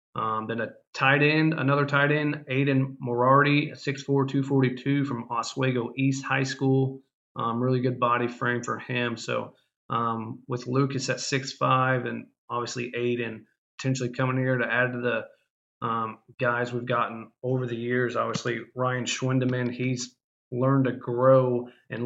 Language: English